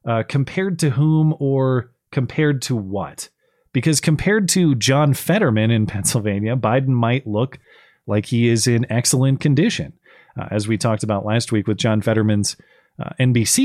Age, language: 30-49, English